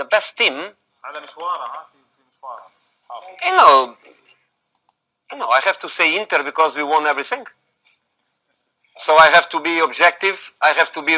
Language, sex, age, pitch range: Chinese, male, 40-59, 135-170 Hz